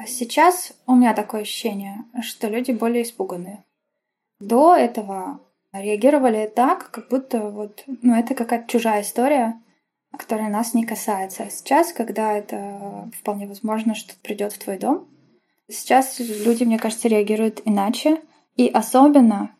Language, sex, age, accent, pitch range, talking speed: Russian, female, 10-29, native, 210-245 Hz, 135 wpm